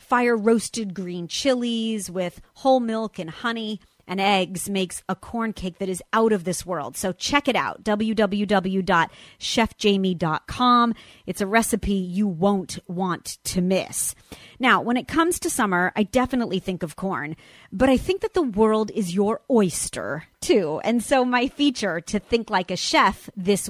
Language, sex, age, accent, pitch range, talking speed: English, female, 30-49, American, 185-240 Hz, 160 wpm